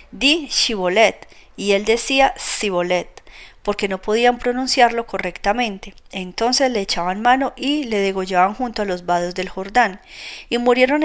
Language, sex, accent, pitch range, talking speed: Spanish, female, Colombian, 195-255 Hz, 140 wpm